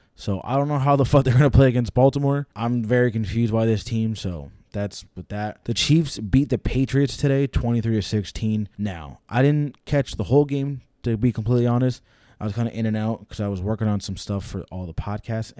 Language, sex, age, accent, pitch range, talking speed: English, male, 20-39, American, 105-125 Hz, 225 wpm